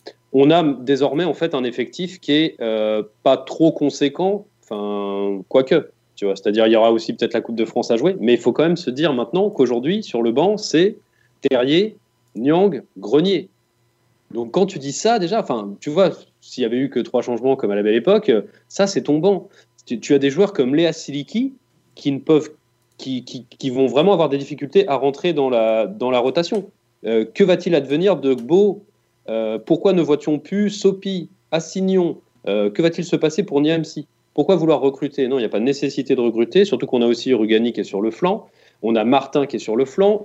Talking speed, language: 215 wpm, French